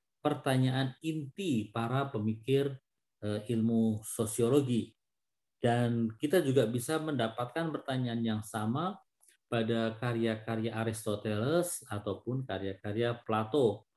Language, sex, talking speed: Indonesian, male, 85 wpm